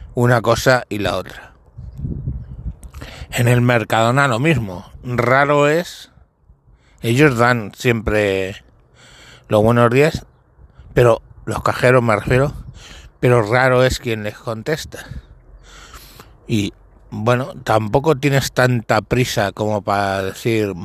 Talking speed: 110 wpm